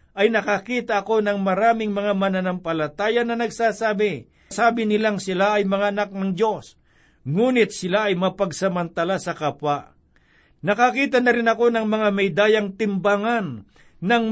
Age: 60-79